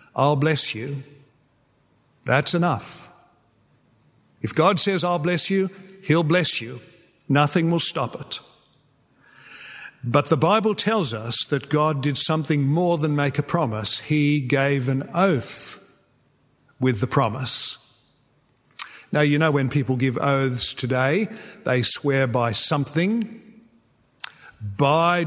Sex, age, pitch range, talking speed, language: male, 50-69, 135-165 Hz, 125 wpm, English